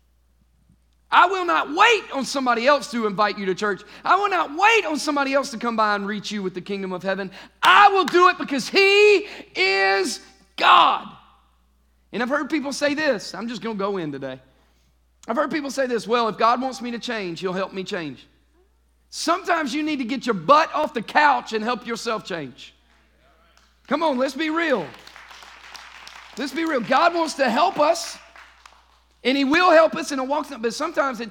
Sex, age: male, 40-59